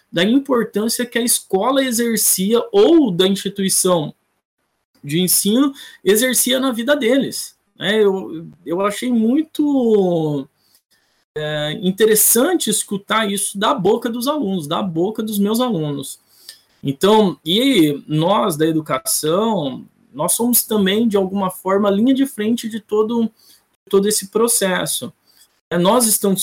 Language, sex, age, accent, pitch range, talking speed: Portuguese, male, 20-39, Brazilian, 175-230 Hz, 115 wpm